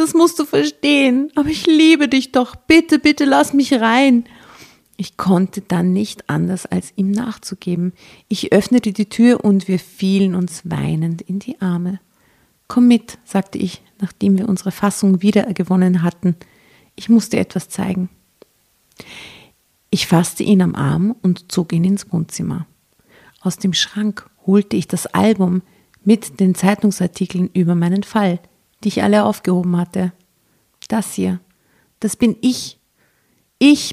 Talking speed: 145 wpm